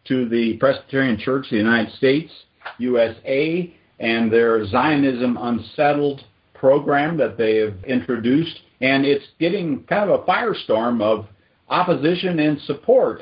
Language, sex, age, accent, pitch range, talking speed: English, male, 50-69, American, 110-145 Hz, 130 wpm